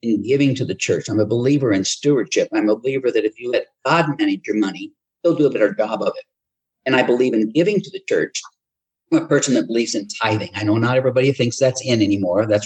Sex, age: male, 50-69